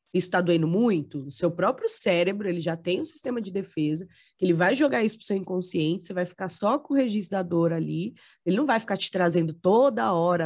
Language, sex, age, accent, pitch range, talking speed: Portuguese, female, 20-39, Brazilian, 170-225 Hz, 235 wpm